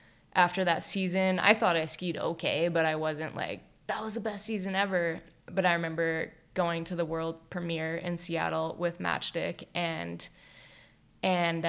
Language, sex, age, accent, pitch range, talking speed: English, female, 20-39, American, 160-175 Hz, 165 wpm